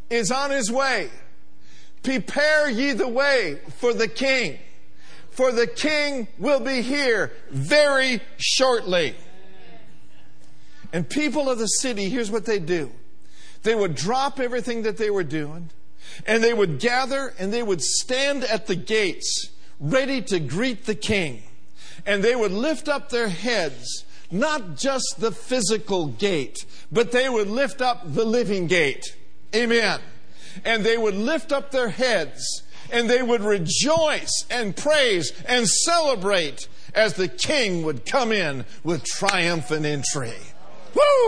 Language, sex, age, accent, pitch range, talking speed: English, male, 50-69, American, 175-260 Hz, 140 wpm